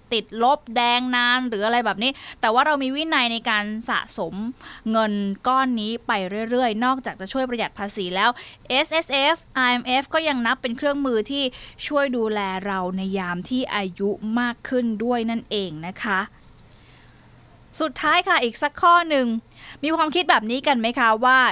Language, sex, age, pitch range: Thai, female, 20-39, 215-260 Hz